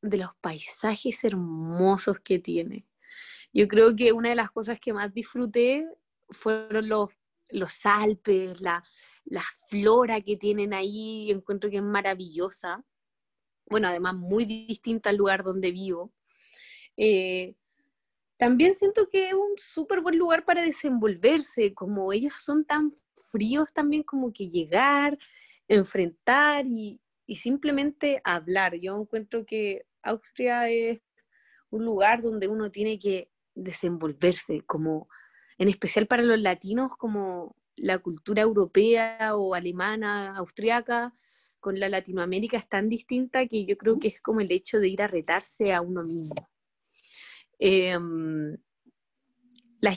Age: 20-39